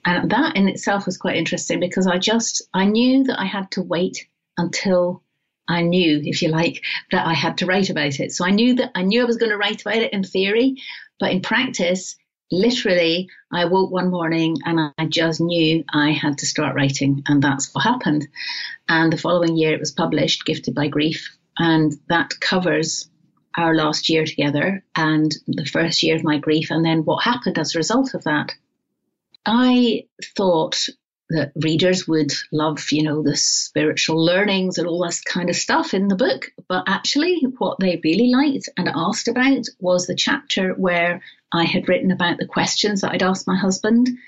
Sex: female